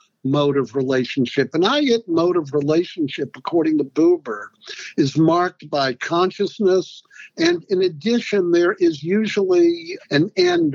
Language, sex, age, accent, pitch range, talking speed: English, male, 60-79, American, 145-195 Hz, 130 wpm